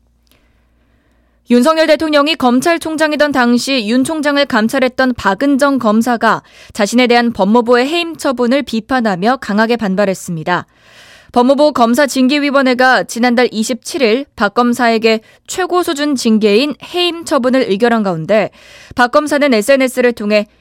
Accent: native